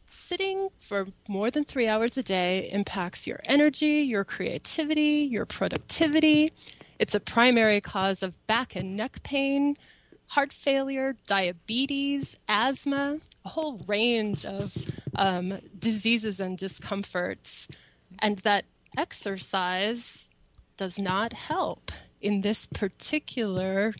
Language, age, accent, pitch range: English, 20-39, American, 195-255 Hz